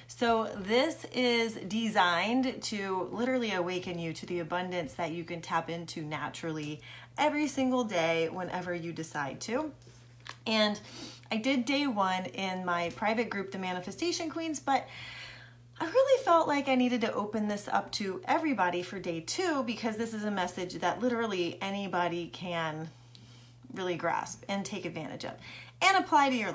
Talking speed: 160 wpm